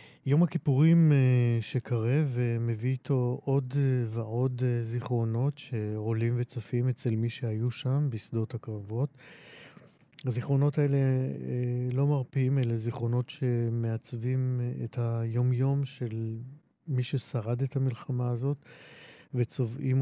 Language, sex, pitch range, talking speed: Hebrew, male, 115-135 Hz, 95 wpm